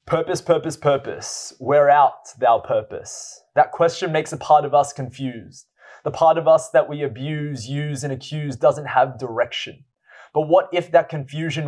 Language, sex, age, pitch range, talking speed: English, male, 20-39, 135-160 Hz, 170 wpm